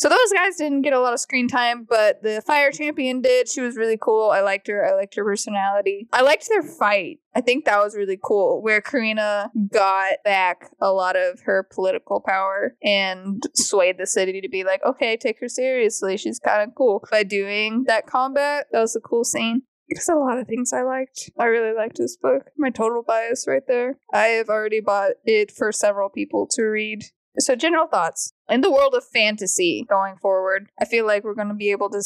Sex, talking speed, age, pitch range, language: female, 215 wpm, 20-39, 200-255 Hz, English